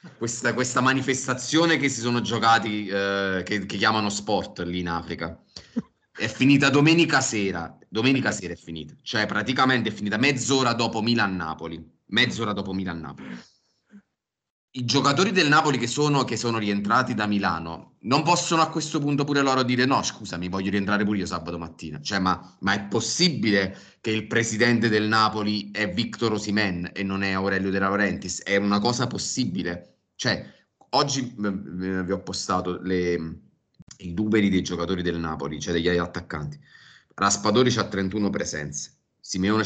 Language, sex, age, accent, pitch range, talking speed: Italian, male, 30-49, native, 90-120 Hz, 155 wpm